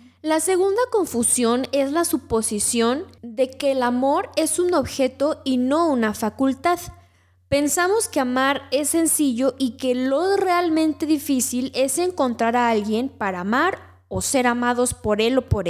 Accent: Mexican